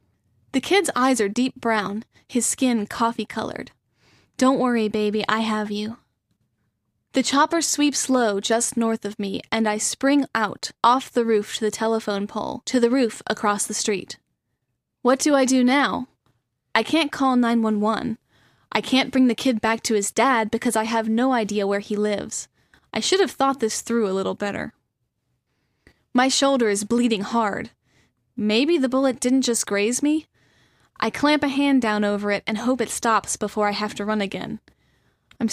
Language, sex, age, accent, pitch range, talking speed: English, female, 10-29, American, 210-255 Hz, 175 wpm